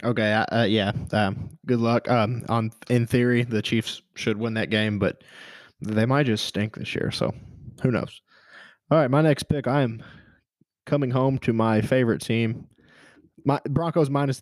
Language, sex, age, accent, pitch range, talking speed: English, male, 20-39, American, 110-130 Hz, 170 wpm